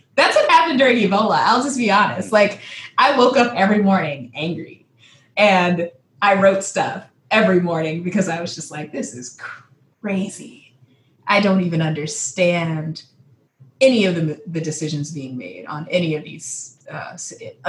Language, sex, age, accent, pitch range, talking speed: English, female, 20-39, American, 140-195 Hz, 155 wpm